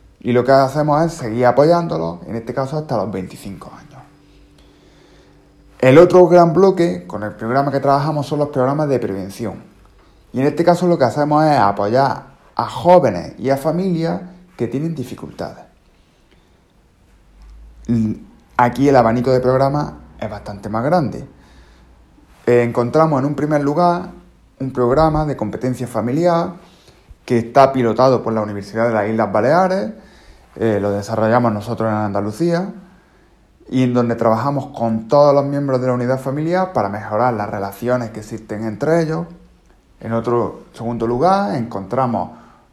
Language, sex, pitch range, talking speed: English, male, 105-150 Hz, 145 wpm